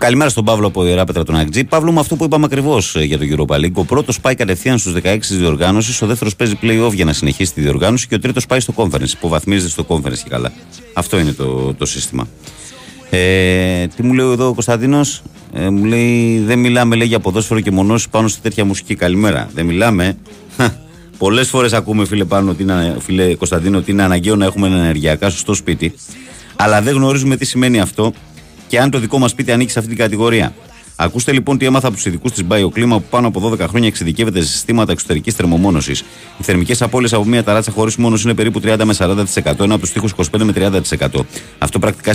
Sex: male